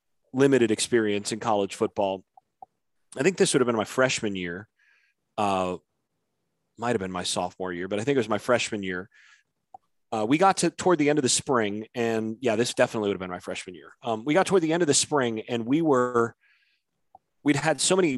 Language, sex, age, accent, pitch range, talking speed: English, male, 30-49, American, 100-140 Hz, 215 wpm